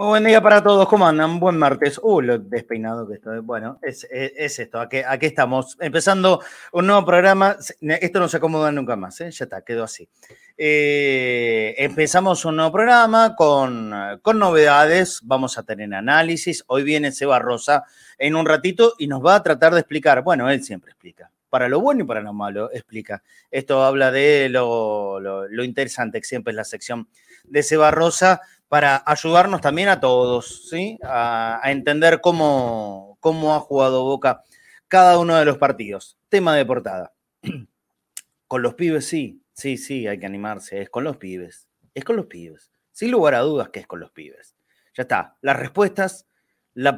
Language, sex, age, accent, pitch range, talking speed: Spanish, male, 30-49, Argentinian, 120-170 Hz, 185 wpm